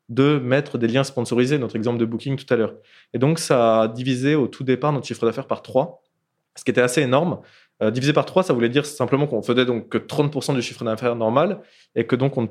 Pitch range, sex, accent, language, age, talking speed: 110-140 Hz, male, French, French, 20-39, 255 wpm